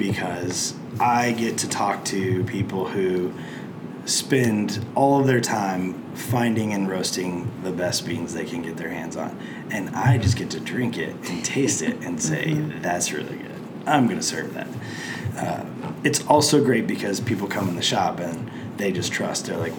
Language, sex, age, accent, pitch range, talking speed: English, male, 20-39, American, 105-130 Hz, 185 wpm